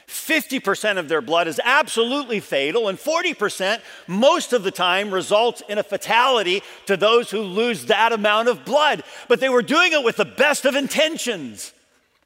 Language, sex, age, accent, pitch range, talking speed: English, male, 50-69, American, 180-280 Hz, 165 wpm